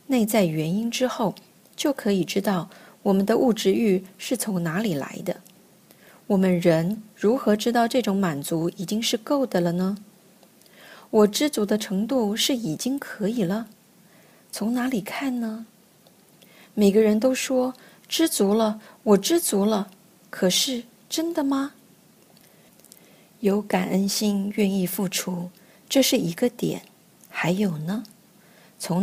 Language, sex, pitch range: Chinese, female, 185-225 Hz